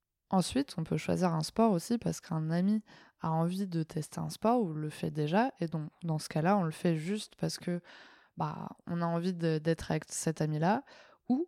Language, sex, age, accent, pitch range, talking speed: French, female, 20-39, French, 160-200 Hz, 215 wpm